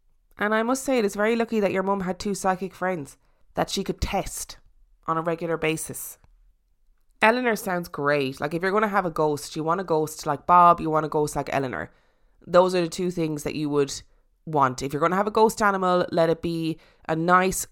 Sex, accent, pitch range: female, Irish, 155-190 Hz